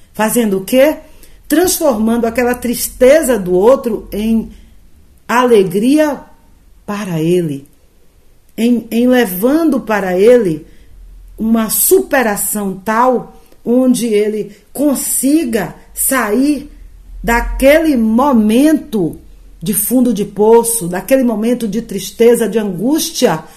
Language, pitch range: Portuguese, 180-245 Hz